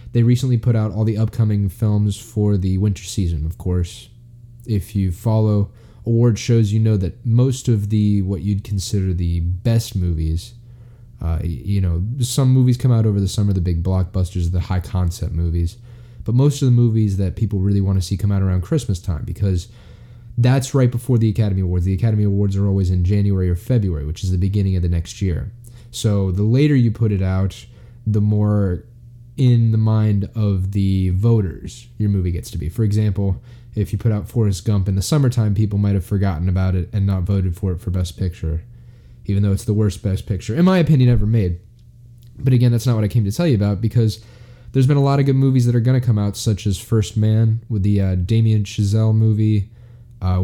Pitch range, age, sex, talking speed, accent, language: 95-120 Hz, 20-39, male, 215 wpm, American, English